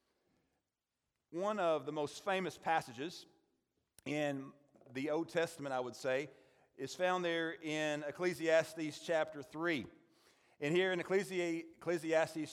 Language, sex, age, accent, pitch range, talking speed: English, male, 40-59, American, 160-210 Hz, 115 wpm